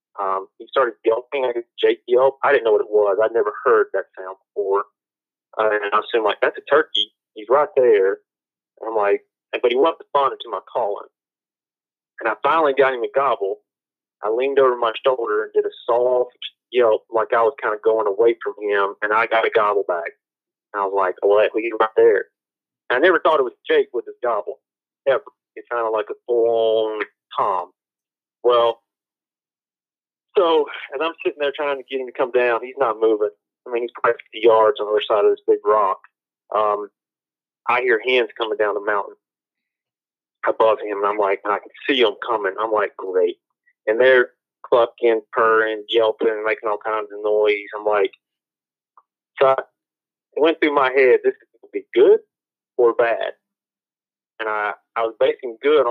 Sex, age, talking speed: male, 40-59, 195 wpm